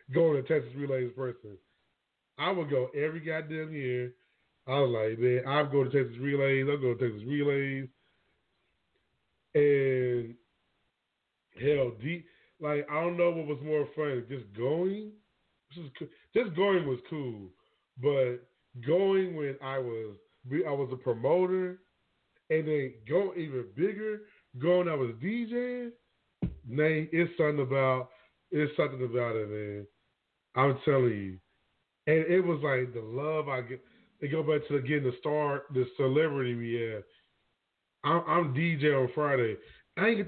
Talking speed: 155 wpm